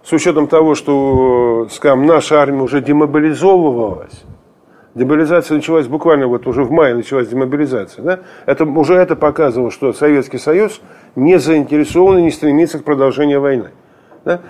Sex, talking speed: male, 145 wpm